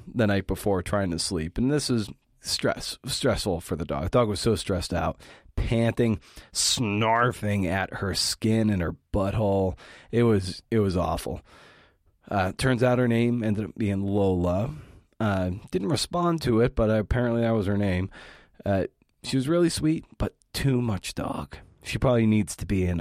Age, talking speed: 30-49, 175 wpm